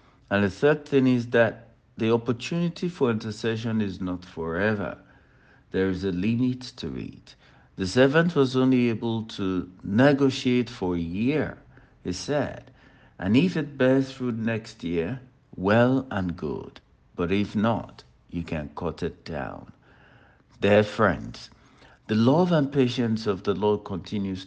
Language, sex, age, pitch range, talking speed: English, male, 60-79, 90-125 Hz, 145 wpm